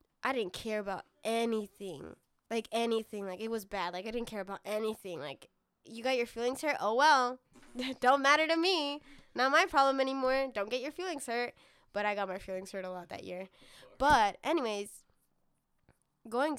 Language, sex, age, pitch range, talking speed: English, female, 10-29, 195-230 Hz, 185 wpm